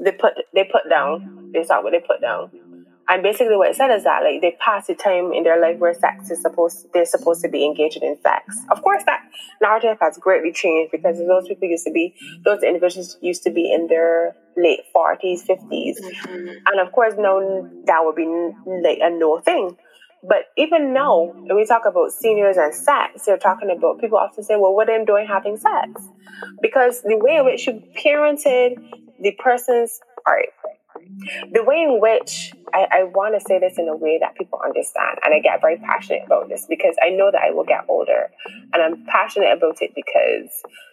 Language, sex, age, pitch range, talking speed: English, female, 20-39, 170-240 Hz, 205 wpm